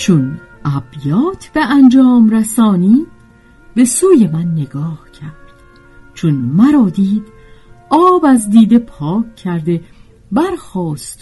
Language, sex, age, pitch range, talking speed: Persian, female, 50-69, 150-250 Hz, 100 wpm